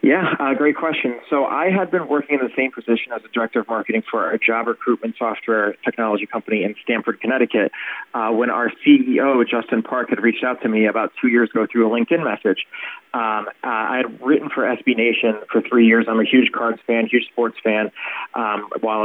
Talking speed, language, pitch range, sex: 210 wpm, English, 110-125 Hz, male